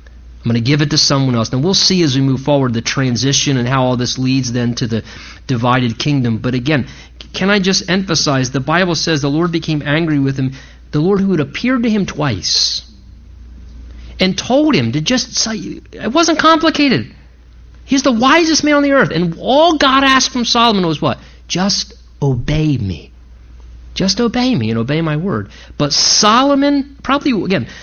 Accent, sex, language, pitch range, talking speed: American, male, English, 115-190 Hz, 190 wpm